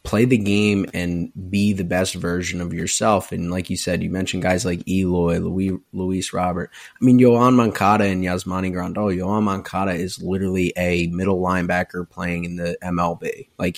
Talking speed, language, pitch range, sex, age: 180 wpm, English, 90-100 Hz, male, 20-39